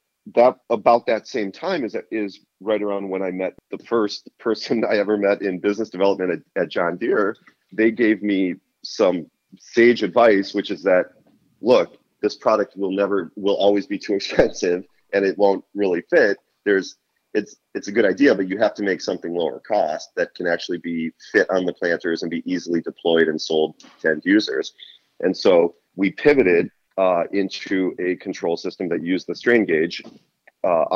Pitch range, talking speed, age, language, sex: 90-110 Hz, 185 wpm, 30-49, English, male